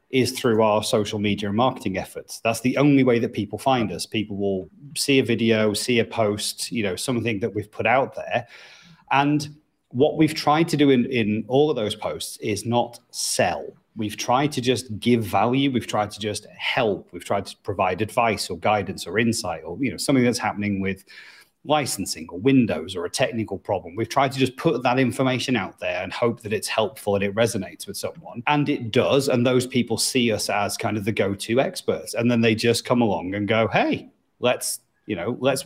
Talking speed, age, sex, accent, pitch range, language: 215 wpm, 30-49, male, British, 110-135 Hz, English